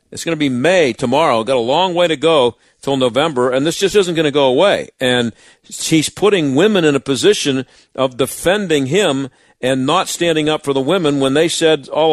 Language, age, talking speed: English, 50-69, 215 wpm